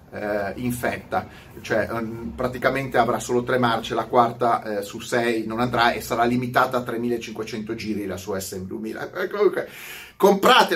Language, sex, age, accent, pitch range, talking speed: Italian, male, 30-49, native, 120-180 Hz, 150 wpm